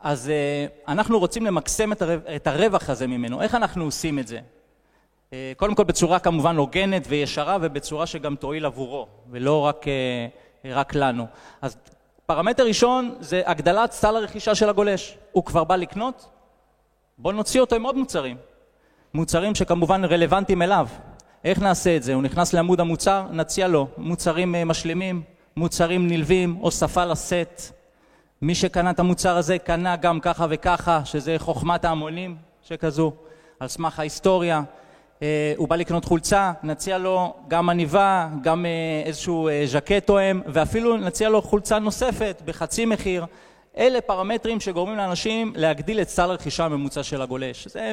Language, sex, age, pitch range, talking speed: Hebrew, male, 30-49, 155-200 Hz, 140 wpm